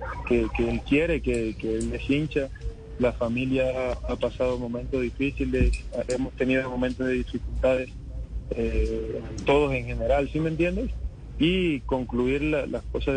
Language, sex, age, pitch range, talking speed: Spanish, male, 20-39, 125-140 Hz, 145 wpm